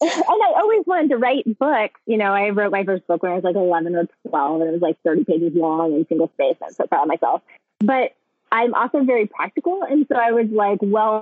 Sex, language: female, English